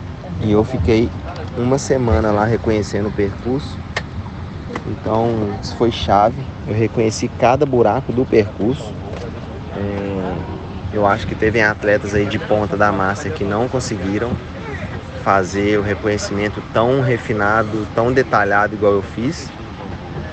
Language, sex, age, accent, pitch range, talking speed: Portuguese, male, 20-39, Brazilian, 100-115 Hz, 125 wpm